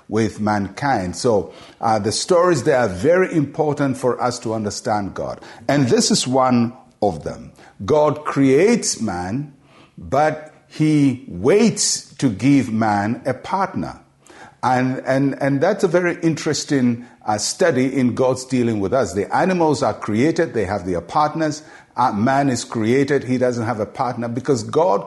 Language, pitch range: English, 120-155 Hz